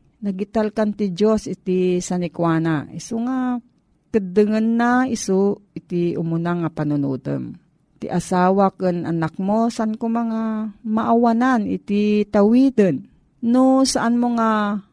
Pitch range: 170-220 Hz